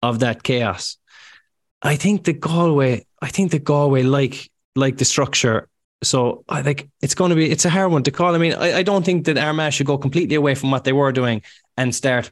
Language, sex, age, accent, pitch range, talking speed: English, male, 20-39, Irish, 120-145 Hz, 230 wpm